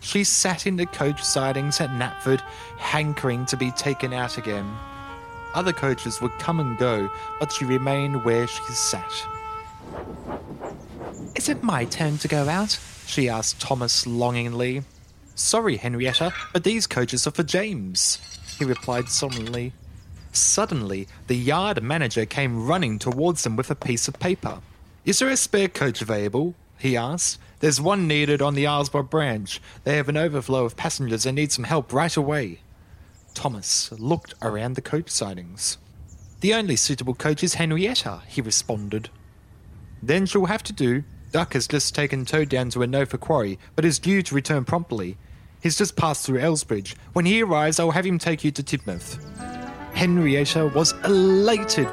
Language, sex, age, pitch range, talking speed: English, male, 20-39, 110-160 Hz, 165 wpm